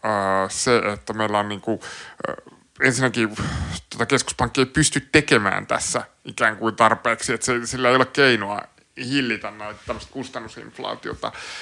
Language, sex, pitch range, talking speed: Finnish, male, 110-130 Hz, 130 wpm